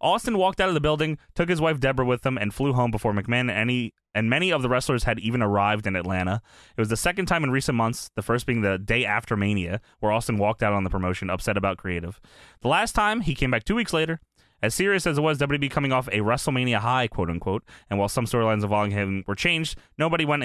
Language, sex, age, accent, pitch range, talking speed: English, male, 20-39, American, 105-140 Hz, 250 wpm